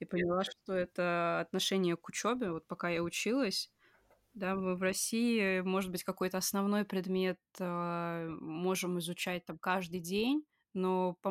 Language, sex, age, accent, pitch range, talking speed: Russian, female, 20-39, native, 175-195 Hz, 145 wpm